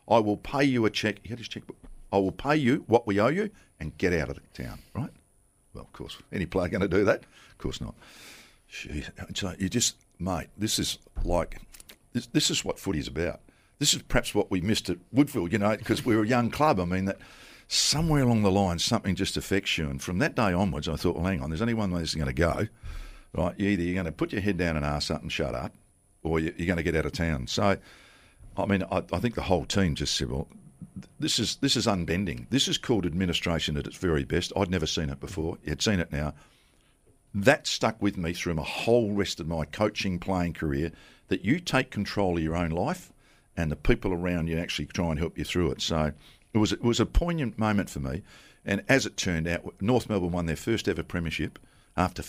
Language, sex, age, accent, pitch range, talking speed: English, male, 60-79, Australian, 80-110 Hz, 240 wpm